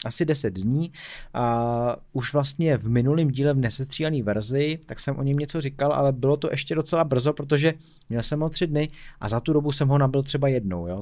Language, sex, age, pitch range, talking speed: Czech, male, 30-49, 115-155 Hz, 220 wpm